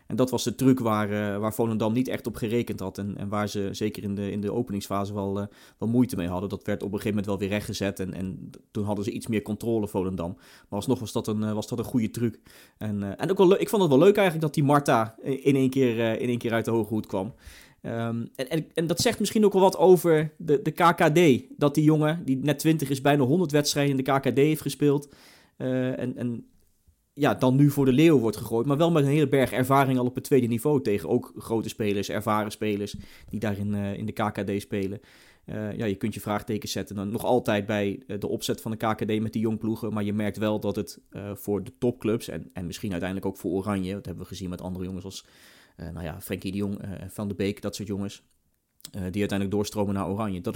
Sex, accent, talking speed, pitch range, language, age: male, Dutch, 260 wpm, 100-130 Hz, Dutch, 20-39